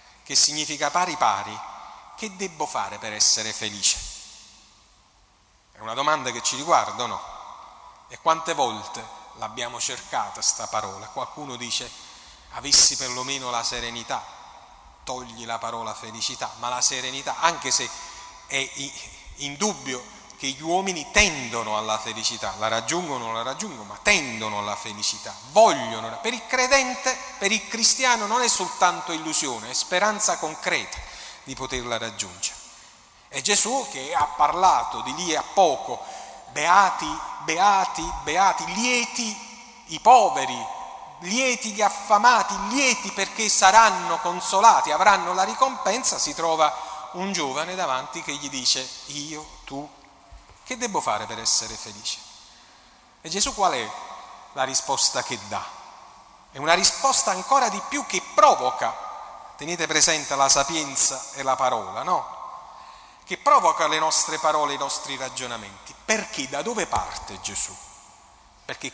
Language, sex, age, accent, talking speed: Italian, male, 40-59, native, 135 wpm